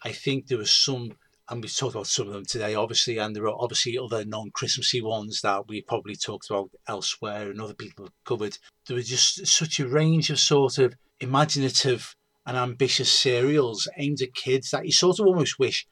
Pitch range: 115-140 Hz